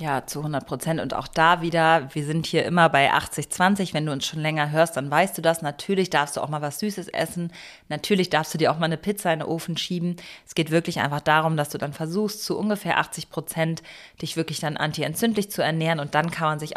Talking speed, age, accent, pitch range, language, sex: 245 wpm, 30-49, German, 150-180 Hz, German, female